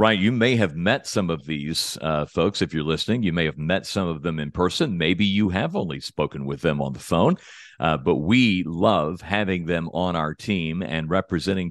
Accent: American